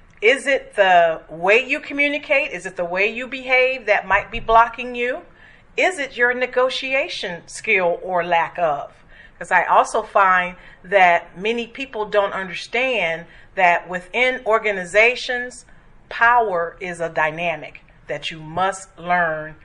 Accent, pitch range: American, 170-235 Hz